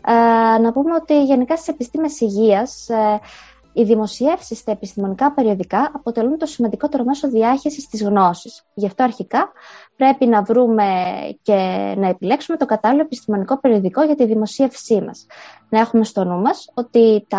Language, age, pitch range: Greek, 20-39, 205-280 Hz